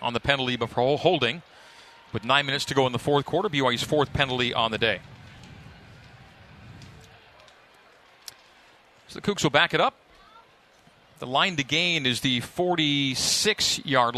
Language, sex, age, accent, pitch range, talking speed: English, male, 40-59, American, 125-150 Hz, 145 wpm